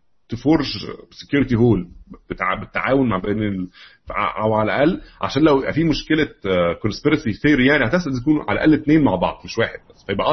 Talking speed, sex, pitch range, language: 165 wpm, male, 100-140 Hz, Arabic